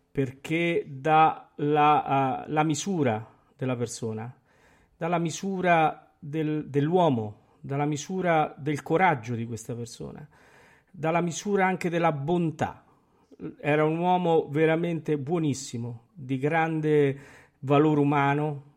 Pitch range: 125-155 Hz